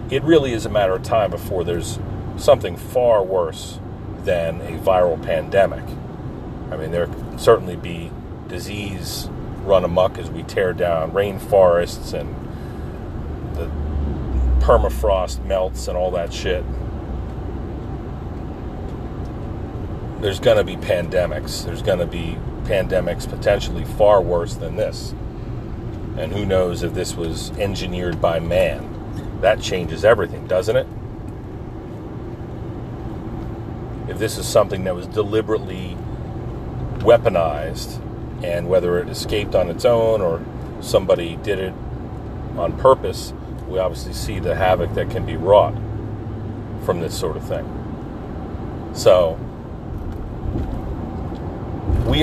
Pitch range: 90-110 Hz